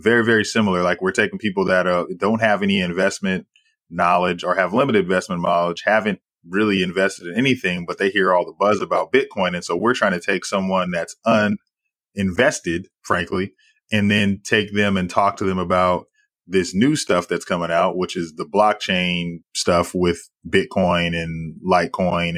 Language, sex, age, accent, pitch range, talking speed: English, male, 20-39, American, 90-105 Hz, 175 wpm